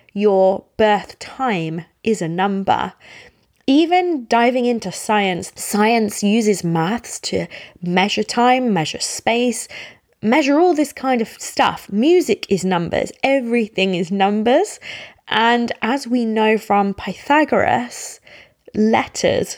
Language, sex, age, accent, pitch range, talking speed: English, female, 20-39, British, 180-235 Hz, 115 wpm